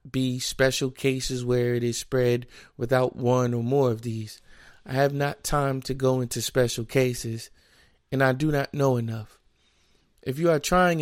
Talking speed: 175 wpm